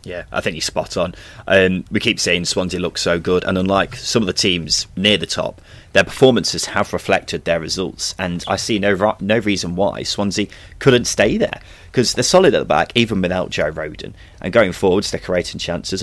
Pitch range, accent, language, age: 90-105 Hz, British, English, 30-49